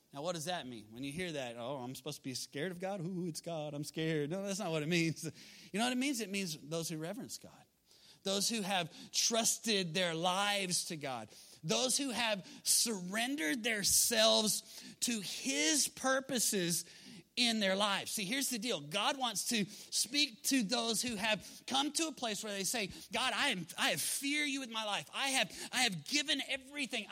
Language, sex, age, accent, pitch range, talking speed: English, male, 30-49, American, 200-275 Hz, 205 wpm